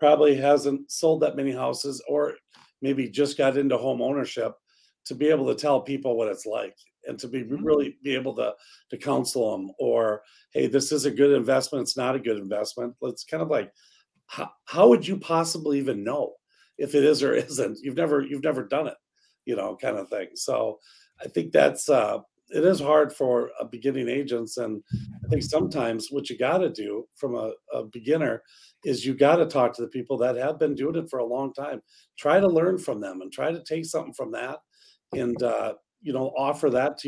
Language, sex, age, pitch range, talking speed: English, male, 40-59, 130-155 Hz, 215 wpm